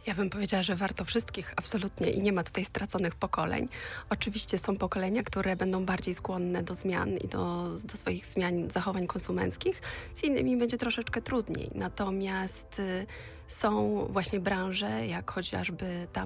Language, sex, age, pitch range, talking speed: Polish, female, 20-39, 170-195 Hz, 150 wpm